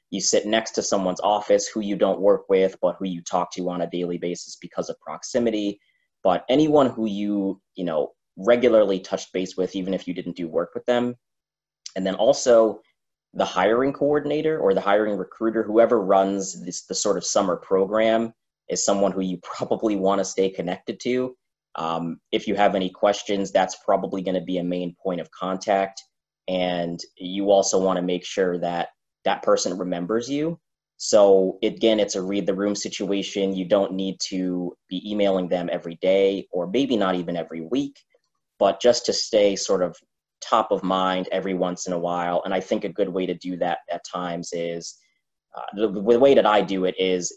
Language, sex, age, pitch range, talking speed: English, male, 20-39, 90-110 Hz, 195 wpm